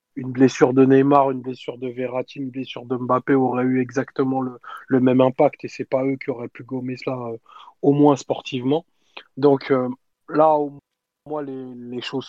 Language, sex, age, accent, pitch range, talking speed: French, male, 20-39, French, 130-145 Hz, 200 wpm